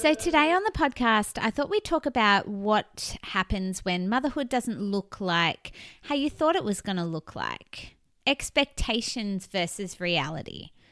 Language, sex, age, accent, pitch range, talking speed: English, female, 20-39, Australian, 180-255 Hz, 160 wpm